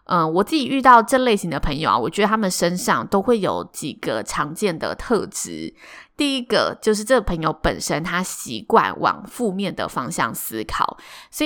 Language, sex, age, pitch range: Chinese, female, 20-39, 175-225 Hz